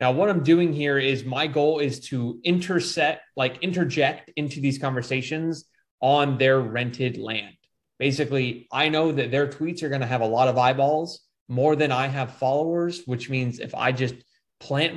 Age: 20-39